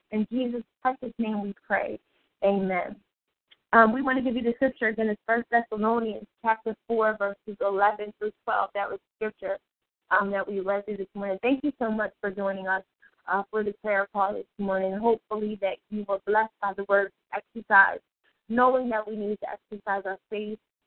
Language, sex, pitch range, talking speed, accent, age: English, female, 195-220 Hz, 195 wpm, American, 20-39